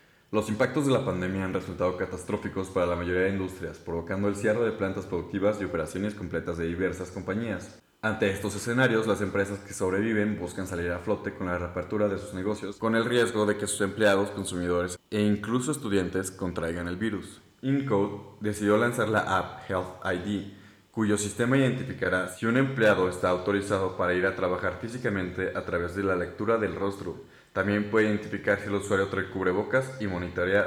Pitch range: 90-105 Hz